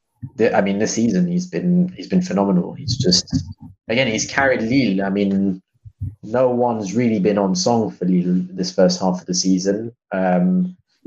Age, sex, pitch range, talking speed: 20-39, male, 100-125 Hz, 180 wpm